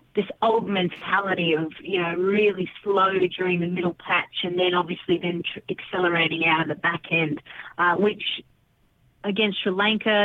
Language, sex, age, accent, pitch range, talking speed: English, female, 30-49, Australian, 160-190 Hz, 165 wpm